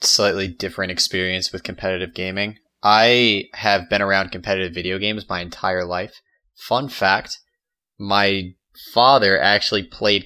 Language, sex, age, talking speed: English, male, 20-39, 130 wpm